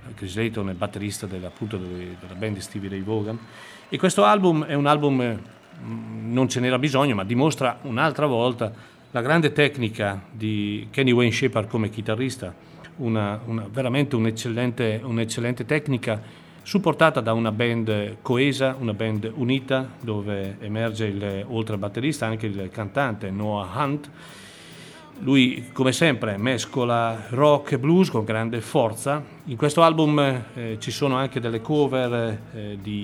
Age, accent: 40-59, native